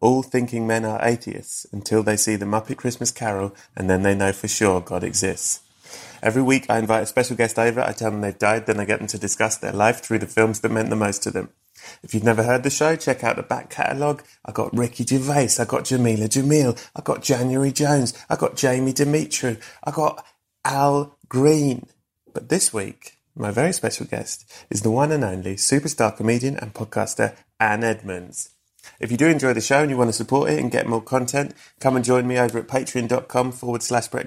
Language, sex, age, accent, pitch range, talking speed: English, male, 30-49, British, 110-135 Hz, 220 wpm